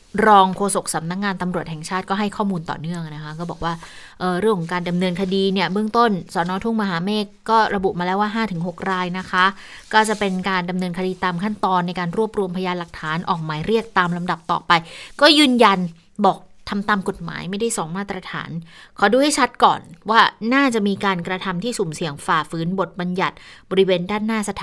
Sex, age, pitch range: female, 20-39, 170-210 Hz